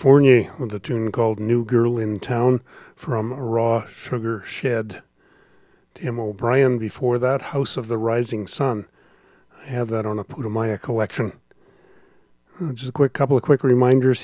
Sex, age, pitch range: male, 40-59, 115-130 Hz